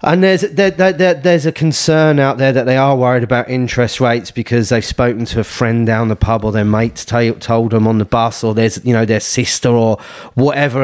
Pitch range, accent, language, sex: 120-165 Hz, British, English, male